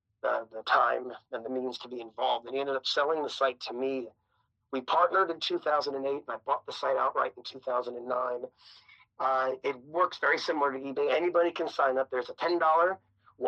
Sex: male